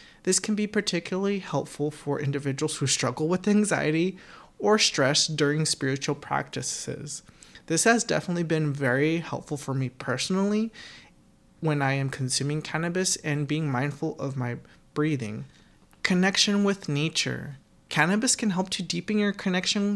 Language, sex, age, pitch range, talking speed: English, male, 30-49, 145-185 Hz, 140 wpm